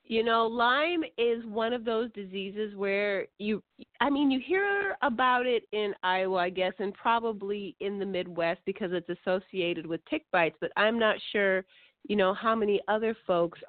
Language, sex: English, female